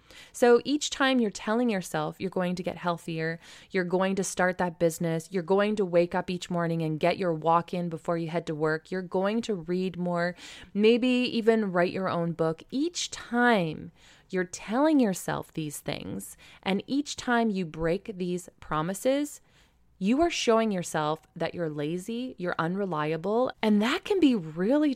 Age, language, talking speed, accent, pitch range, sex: 20-39, English, 175 wpm, American, 165-220 Hz, female